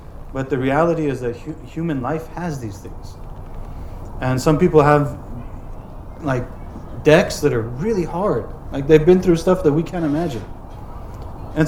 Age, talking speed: 30-49, 155 wpm